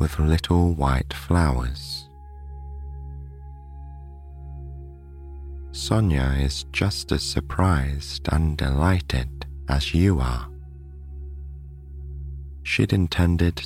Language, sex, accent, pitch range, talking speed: English, male, British, 70-80 Hz, 70 wpm